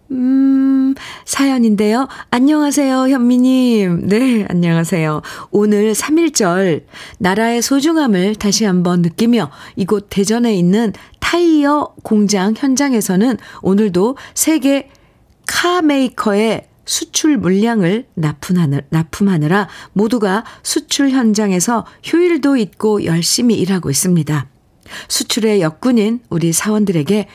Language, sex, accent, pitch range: Korean, female, native, 170-230 Hz